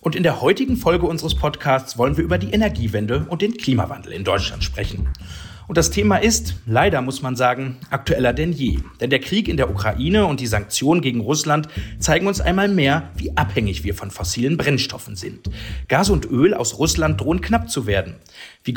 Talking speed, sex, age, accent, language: 195 wpm, male, 40-59, German, German